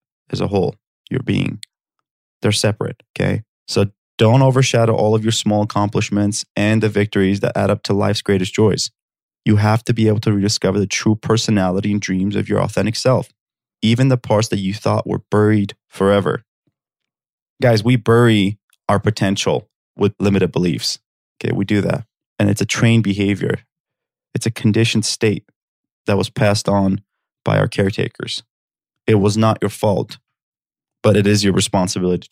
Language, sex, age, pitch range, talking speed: English, male, 20-39, 100-115 Hz, 165 wpm